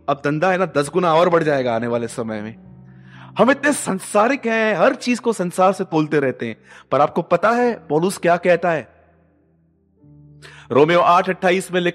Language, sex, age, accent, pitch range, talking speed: Hindi, male, 30-49, native, 145-180 Hz, 120 wpm